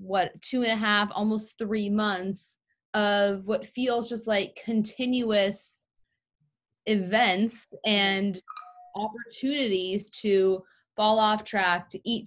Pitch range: 185-215 Hz